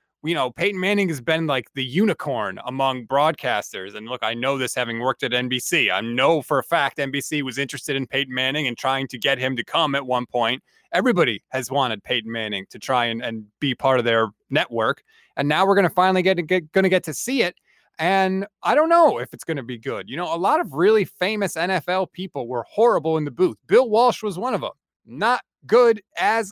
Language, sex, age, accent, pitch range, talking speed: English, male, 30-49, American, 135-195 Hz, 235 wpm